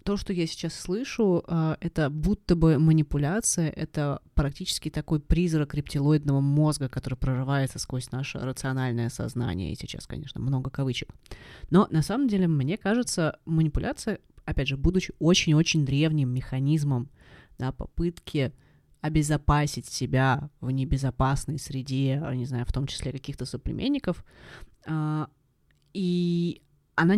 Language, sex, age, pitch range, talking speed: Russian, female, 20-39, 135-175 Hz, 125 wpm